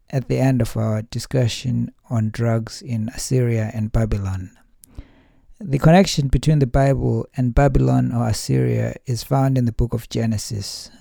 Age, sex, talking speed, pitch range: 60-79, male, 155 wpm, 115-140 Hz